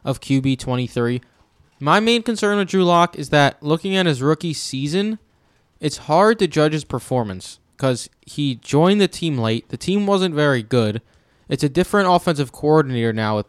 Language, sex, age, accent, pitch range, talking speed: English, male, 20-39, American, 120-155 Hz, 175 wpm